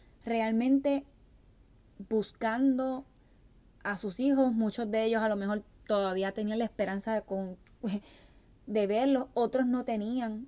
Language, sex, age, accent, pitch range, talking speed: Spanish, female, 20-39, American, 220-285 Hz, 120 wpm